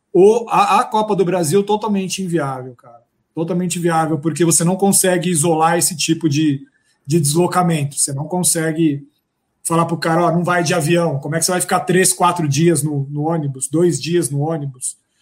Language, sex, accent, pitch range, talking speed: Portuguese, male, Brazilian, 160-195 Hz, 195 wpm